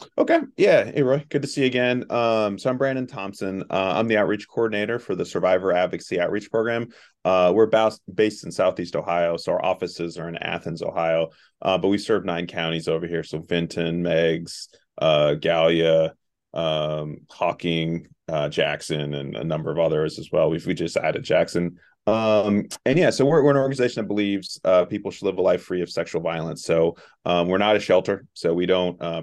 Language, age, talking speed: English, 30-49, 200 wpm